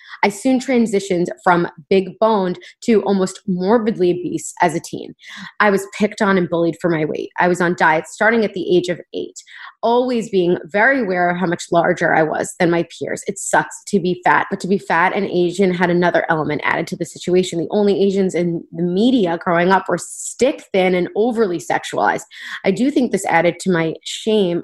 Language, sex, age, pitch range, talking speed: English, female, 20-39, 180-230 Hz, 205 wpm